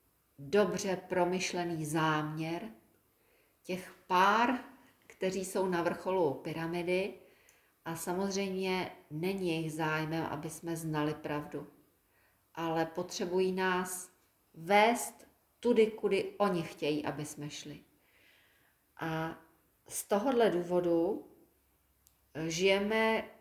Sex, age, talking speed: female, 40-59, 90 wpm